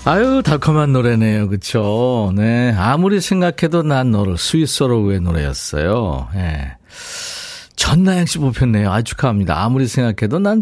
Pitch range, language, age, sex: 100-145 Hz, Korean, 50-69, male